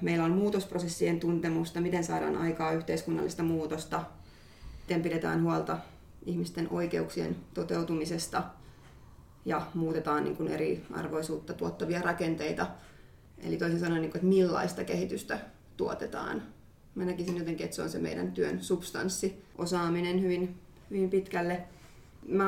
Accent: native